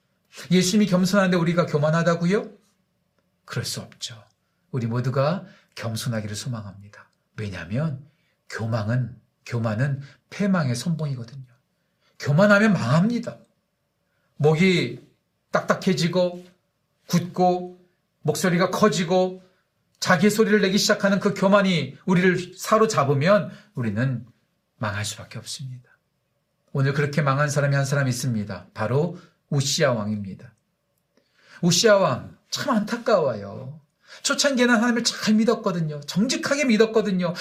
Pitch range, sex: 135-195 Hz, male